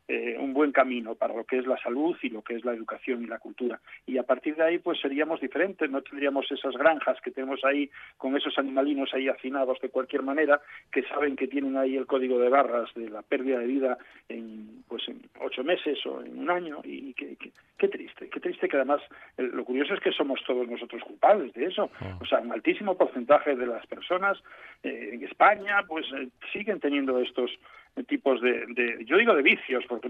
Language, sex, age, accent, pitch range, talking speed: Spanish, male, 50-69, Spanish, 125-155 Hz, 215 wpm